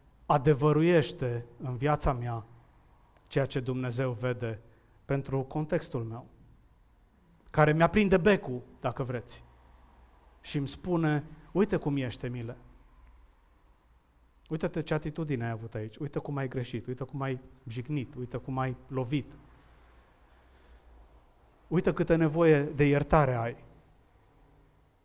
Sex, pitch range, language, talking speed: male, 120-155 Hz, Romanian, 115 wpm